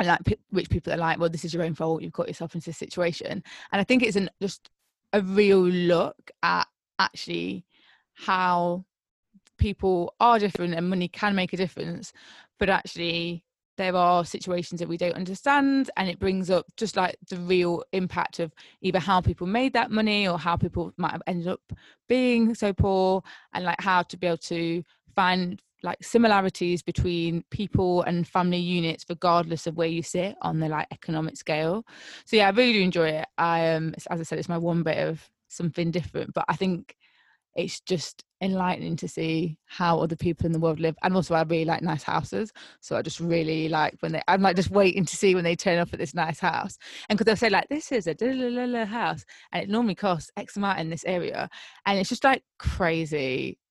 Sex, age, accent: female, 20-39, British